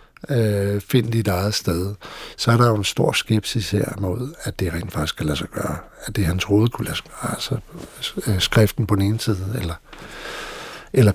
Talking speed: 185 wpm